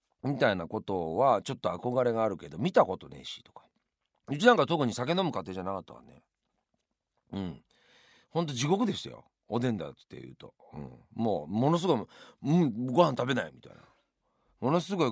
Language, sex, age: Japanese, male, 40-59